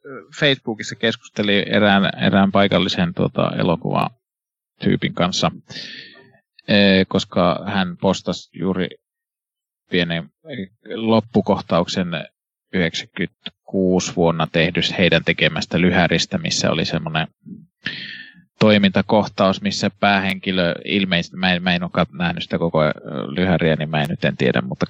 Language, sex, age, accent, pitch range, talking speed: Finnish, male, 20-39, native, 85-105 Hz, 100 wpm